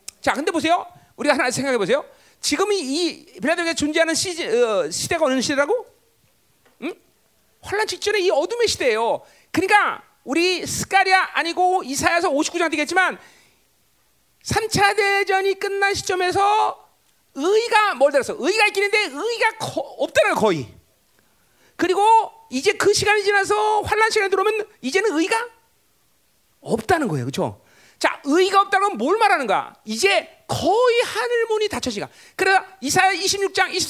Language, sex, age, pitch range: Korean, male, 40-59, 350-440 Hz